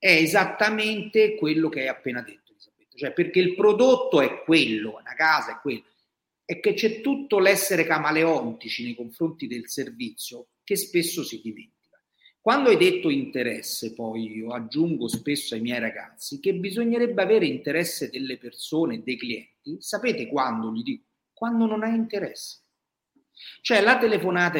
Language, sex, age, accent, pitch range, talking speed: Italian, male, 40-59, native, 135-230 Hz, 150 wpm